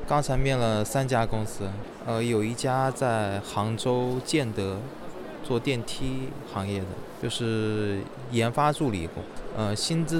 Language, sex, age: Chinese, male, 20-39